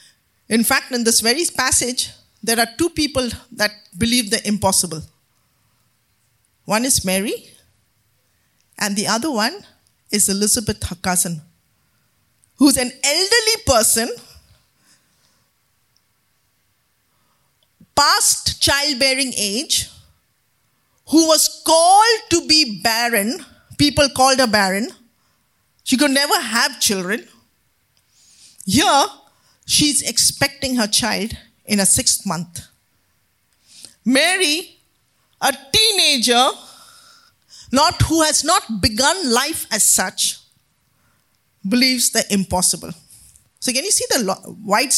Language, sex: English, female